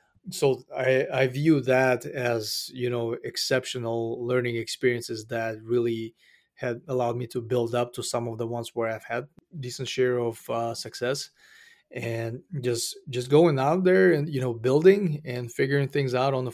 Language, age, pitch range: English, 20-39, 115-135 Hz